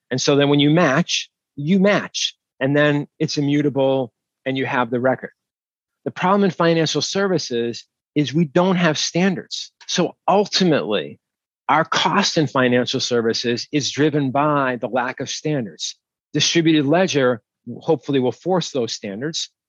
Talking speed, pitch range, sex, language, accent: 145 wpm, 125-155 Hz, male, English, American